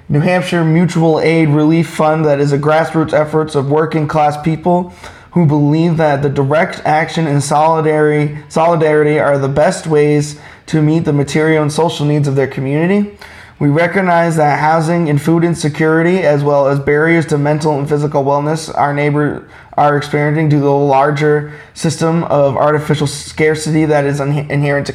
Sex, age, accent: male, 20-39, American